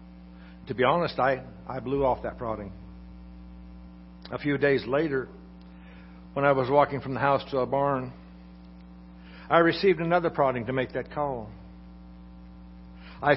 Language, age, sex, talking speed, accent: English, 60-79, male, 145 wpm, American